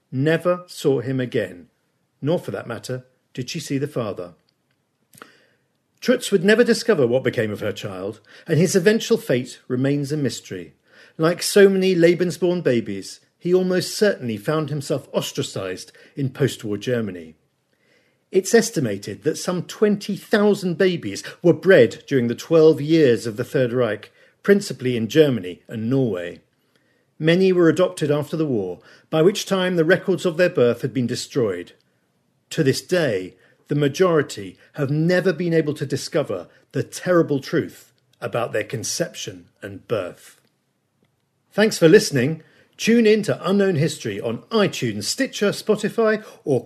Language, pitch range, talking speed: English, 125-185 Hz, 145 wpm